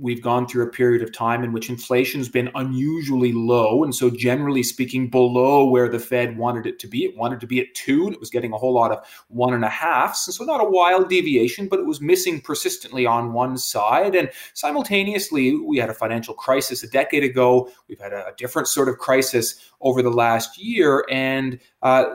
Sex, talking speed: male, 215 wpm